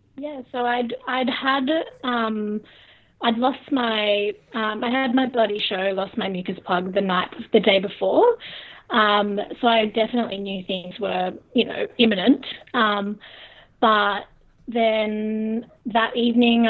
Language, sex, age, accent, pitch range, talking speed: English, female, 20-39, Australian, 210-245 Hz, 140 wpm